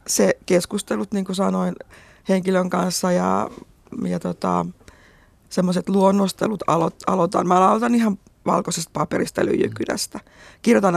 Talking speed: 110 wpm